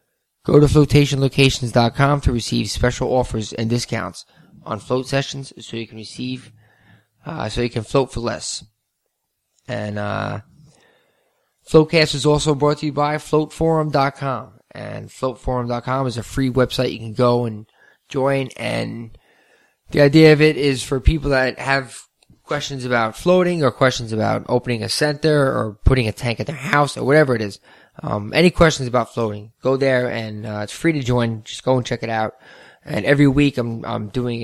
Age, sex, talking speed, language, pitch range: 20-39, male, 175 wpm, English, 110-135 Hz